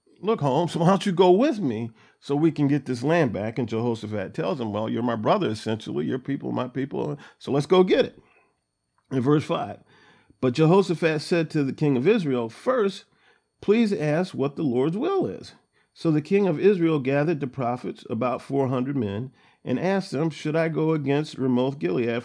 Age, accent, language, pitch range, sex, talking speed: 40-59, American, English, 125-180 Hz, male, 195 wpm